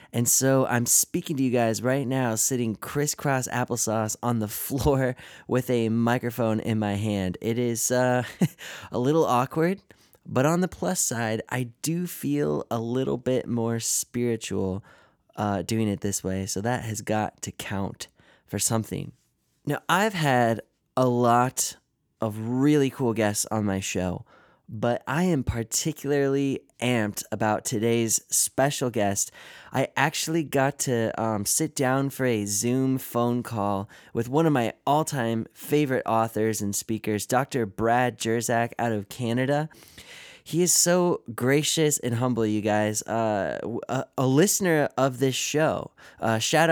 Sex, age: male, 20-39